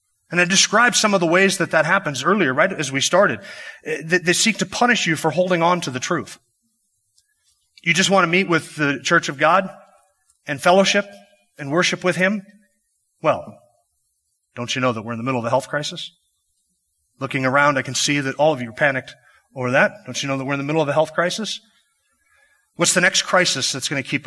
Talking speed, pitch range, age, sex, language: 220 wpm, 125-175 Hz, 30-49, male, English